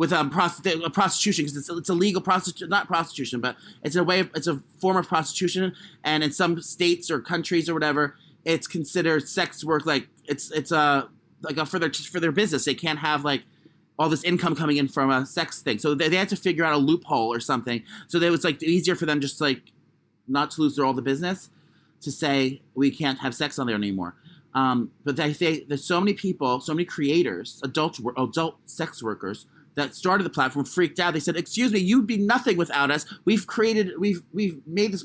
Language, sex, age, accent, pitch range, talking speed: English, male, 30-49, American, 150-195 Hz, 225 wpm